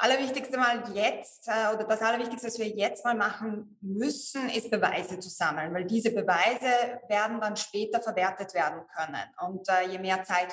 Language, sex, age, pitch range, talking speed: German, female, 20-39, 200-230 Hz, 170 wpm